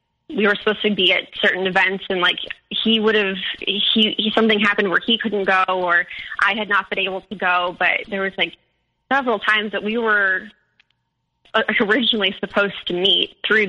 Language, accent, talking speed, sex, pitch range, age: English, American, 190 wpm, female, 185-215 Hz, 20-39